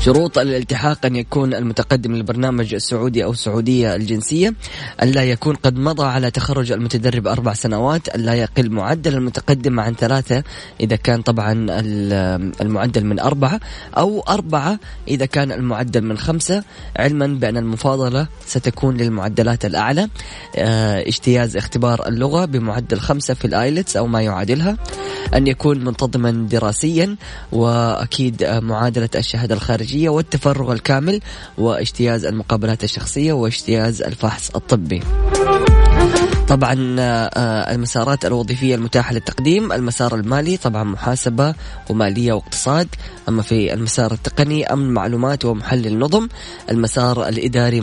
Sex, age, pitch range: female, 20-39, 115-135 Hz